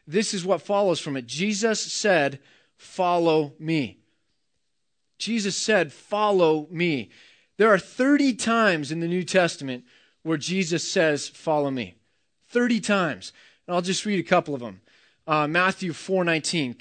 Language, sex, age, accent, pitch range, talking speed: English, male, 30-49, American, 150-190 Hz, 145 wpm